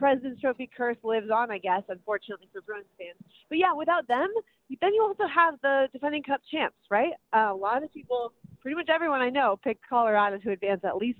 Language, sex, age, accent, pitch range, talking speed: English, female, 30-49, American, 190-245 Hz, 215 wpm